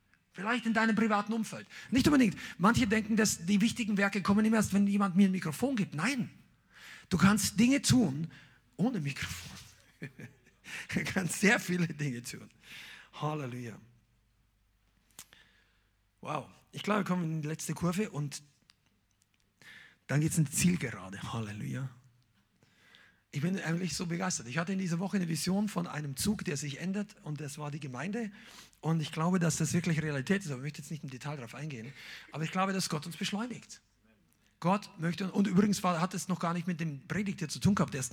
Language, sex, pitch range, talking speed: German, male, 140-195 Hz, 185 wpm